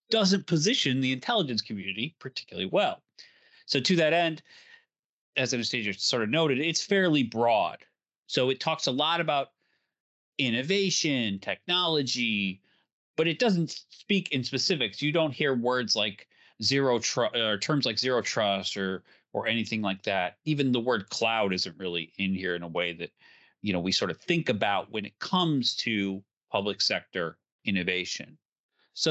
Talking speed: 160 wpm